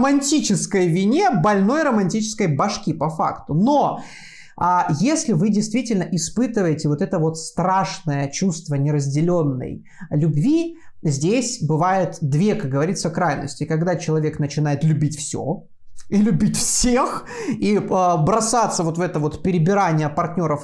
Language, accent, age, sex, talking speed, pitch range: Russian, native, 20-39, male, 120 wpm, 150-195 Hz